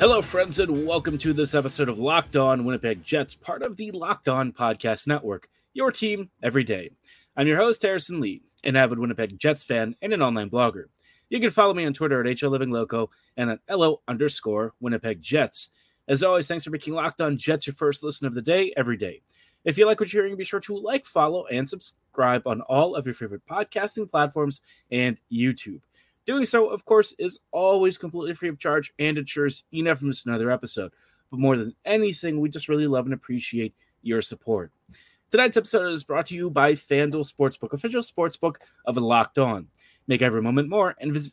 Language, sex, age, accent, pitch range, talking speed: English, male, 30-49, American, 125-175 Hz, 200 wpm